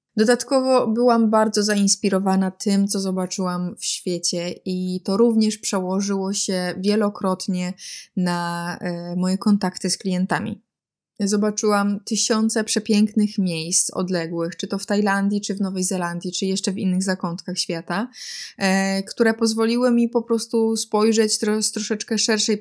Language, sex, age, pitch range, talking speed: Polish, female, 20-39, 185-220 Hz, 130 wpm